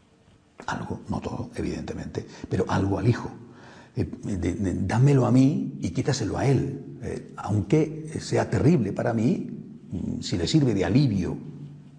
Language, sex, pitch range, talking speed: Spanish, male, 95-125 Hz, 135 wpm